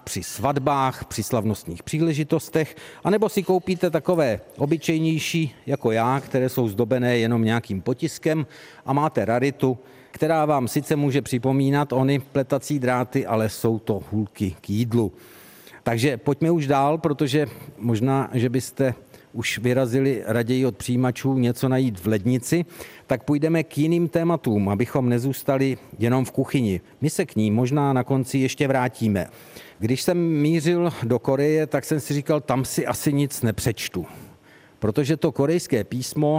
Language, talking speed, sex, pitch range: Czech, 145 wpm, male, 115-145 Hz